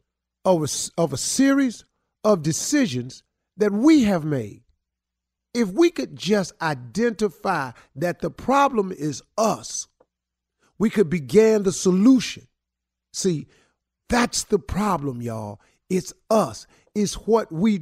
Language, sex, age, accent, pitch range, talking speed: English, male, 50-69, American, 120-170 Hz, 120 wpm